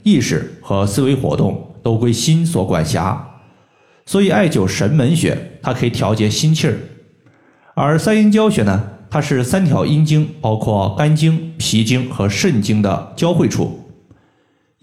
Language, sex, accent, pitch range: Chinese, male, native, 100-150 Hz